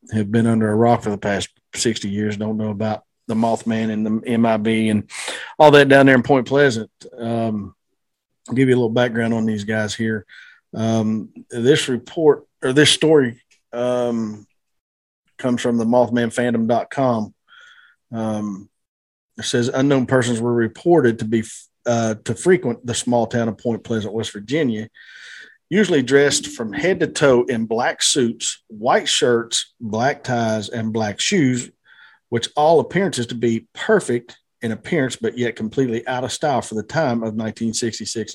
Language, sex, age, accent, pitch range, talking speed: English, male, 40-59, American, 110-125 Hz, 160 wpm